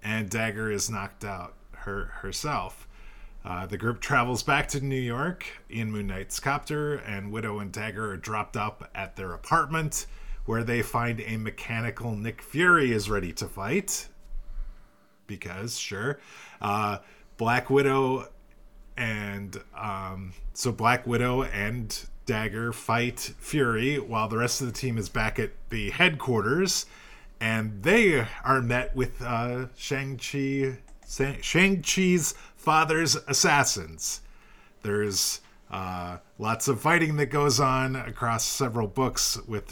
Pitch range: 105-135 Hz